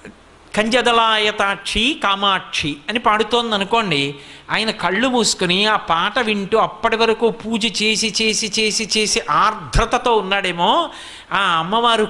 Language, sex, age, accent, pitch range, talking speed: Telugu, male, 60-79, native, 200-245 Hz, 105 wpm